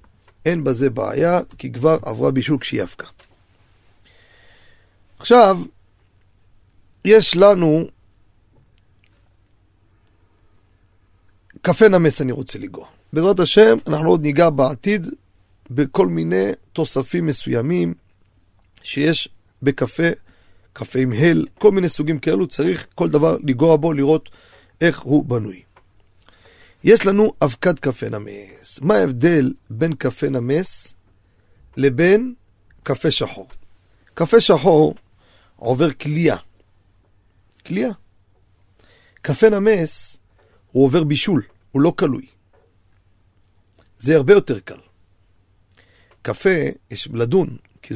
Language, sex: Hebrew, male